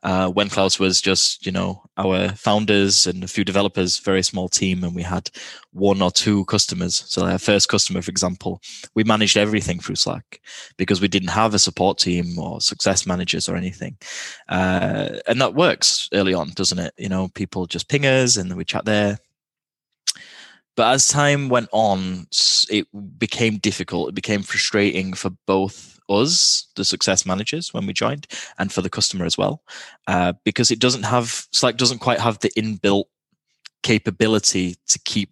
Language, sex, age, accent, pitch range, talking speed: English, male, 10-29, British, 95-110 Hz, 175 wpm